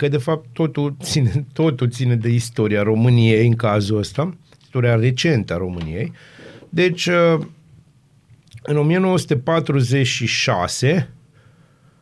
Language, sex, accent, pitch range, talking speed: Romanian, male, native, 125-160 Hz, 95 wpm